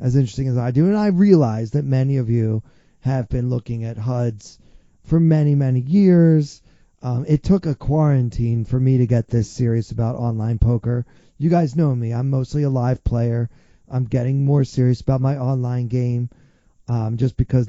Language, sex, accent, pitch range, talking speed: English, male, American, 120-145 Hz, 185 wpm